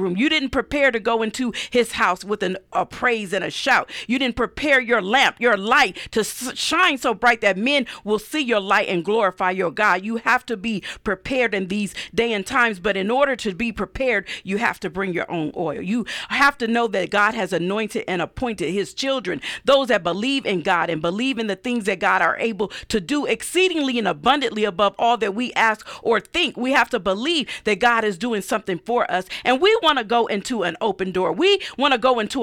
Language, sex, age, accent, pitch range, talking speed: English, female, 40-59, American, 195-250 Hz, 230 wpm